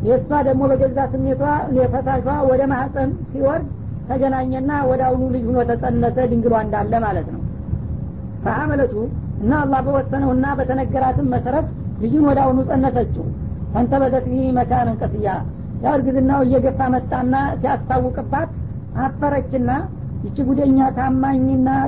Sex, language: female, Amharic